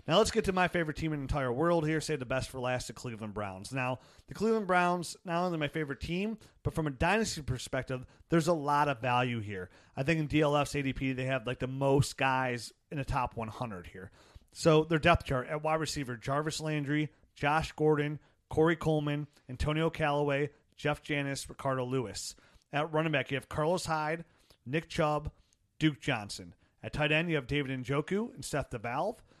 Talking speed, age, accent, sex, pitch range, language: 195 wpm, 30-49, American, male, 125-160 Hz, English